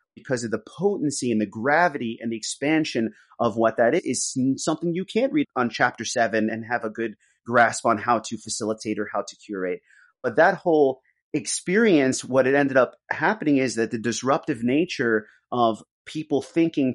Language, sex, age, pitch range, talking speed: English, male, 30-49, 120-150 Hz, 185 wpm